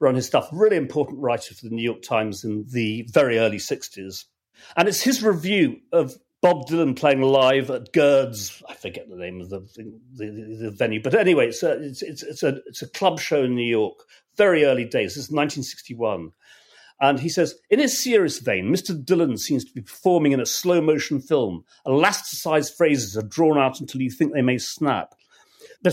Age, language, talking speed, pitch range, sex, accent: 40-59, English, 200 wpm, 120-170 Hz, male, British